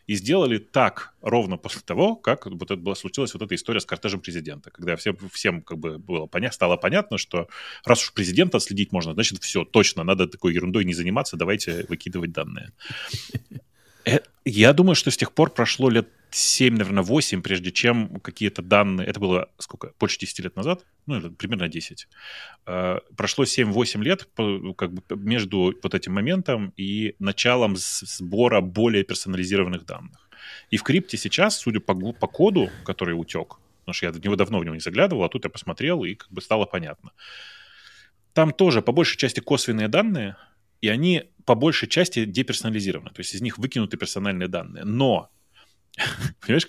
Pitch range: 95-125 Hz